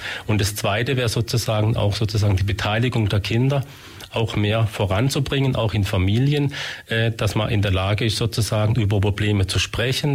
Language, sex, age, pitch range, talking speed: German, male, 40-59, 100-115 Hz, 165 wpm